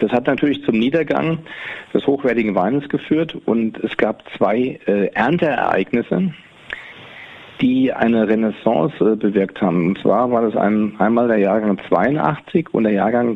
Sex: male